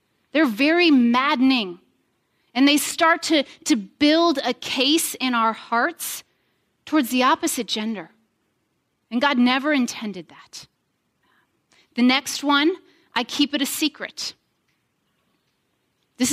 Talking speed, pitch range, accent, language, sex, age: 120 wpm, 255-355 Hz, American, English, female, 30-49